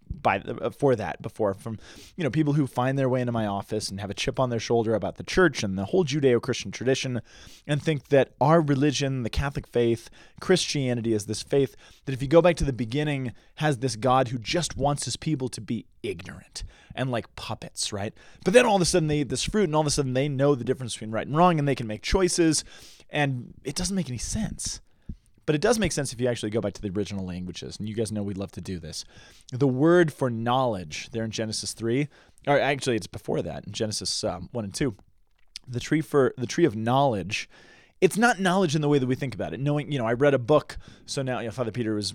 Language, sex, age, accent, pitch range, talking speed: English, male, 20-39, American, 115-150 Hz, 245 wpm